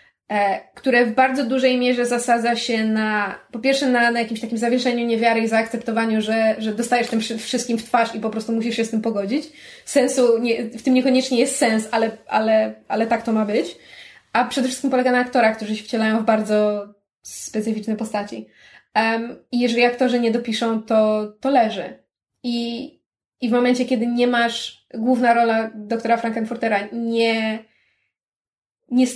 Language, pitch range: Polish, 220-255 Hz